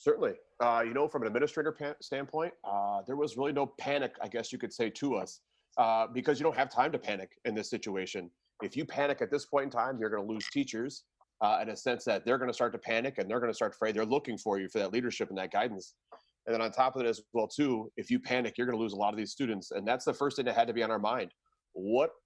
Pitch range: 110-140 Hz